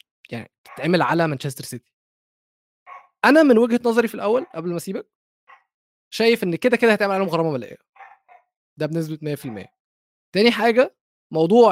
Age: 20-39